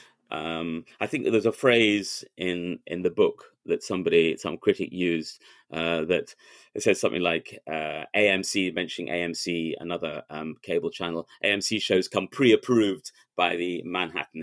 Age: 30-49